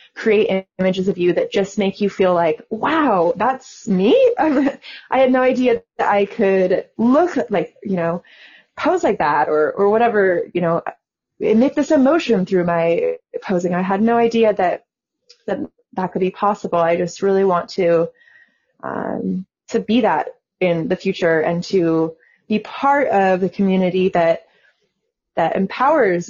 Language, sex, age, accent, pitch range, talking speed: English, female, 20-39, American, 175-230 Hz, 160 wpm